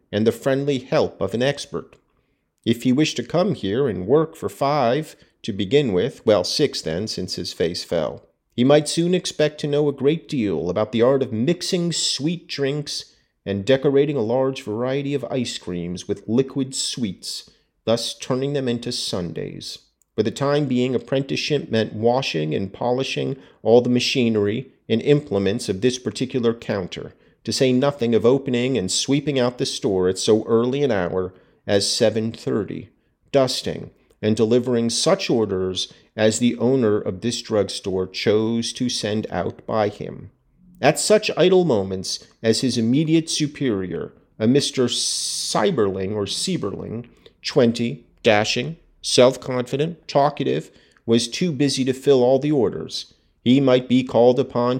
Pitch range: 110-140 Hz